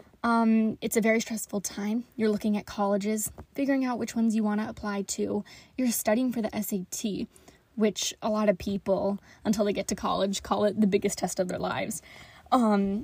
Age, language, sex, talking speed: 10-29, English, female, 200 wpm